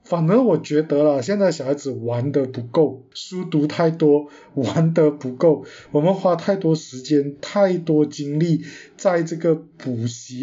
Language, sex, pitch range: Chinese, male, 135-170 Hz